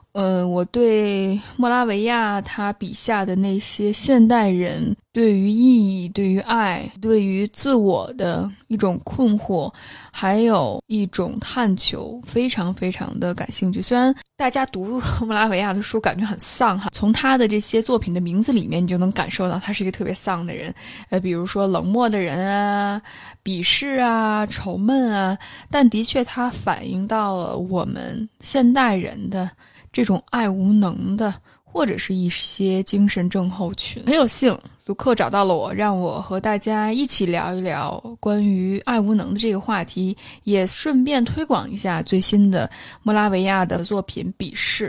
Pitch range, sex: 190-235 Hz, female